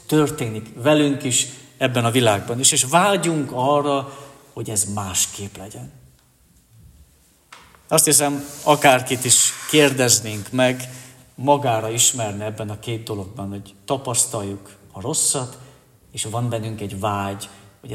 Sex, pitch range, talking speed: male, 110-145 Hz, 120 wpm